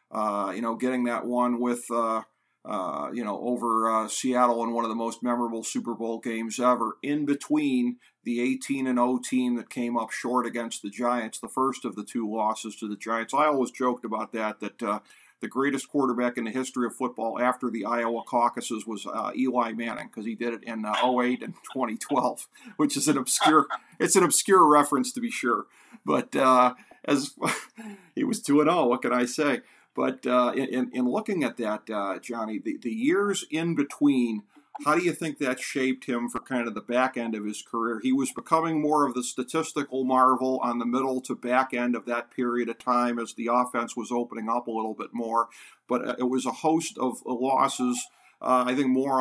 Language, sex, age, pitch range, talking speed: English, male, 50-69, 115-130 Hz, 205 wpm